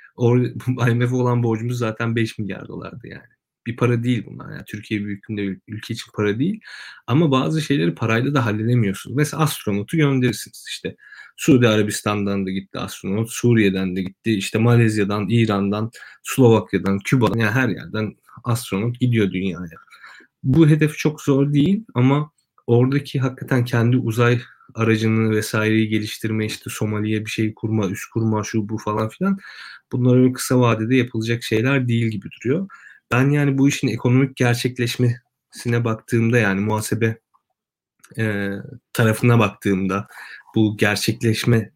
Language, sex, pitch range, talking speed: Turkish, male, 110-130 Hz, 140 wpm